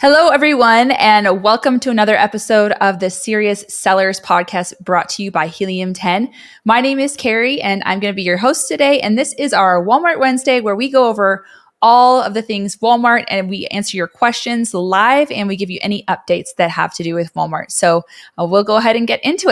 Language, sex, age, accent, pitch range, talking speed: English, female, 20-39, American, 185-230 Hz, 220 wpm